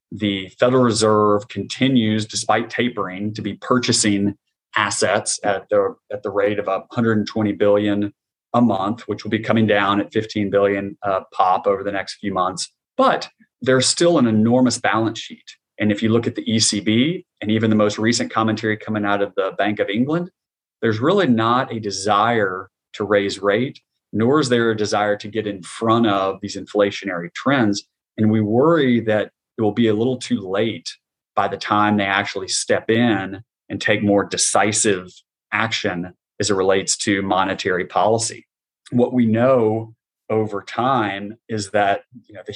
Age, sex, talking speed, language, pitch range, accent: 30-49, male, 170 wpm, English, 100-115 Hz, American